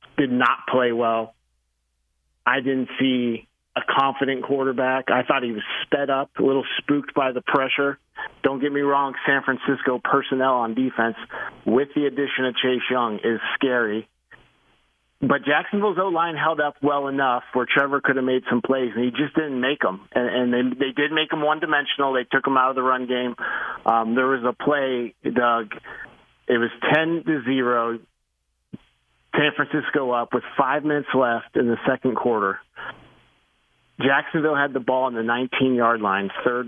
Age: 40-59